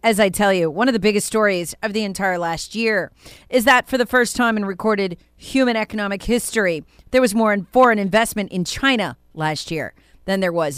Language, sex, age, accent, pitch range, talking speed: English, female, 40-59, American, 175-245 Hz, 205 wpm